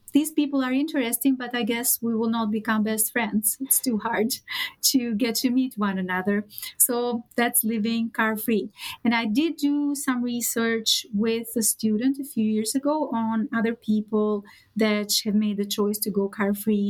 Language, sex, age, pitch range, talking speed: English, female, 30-49, 215-265 Hz, 180 wpm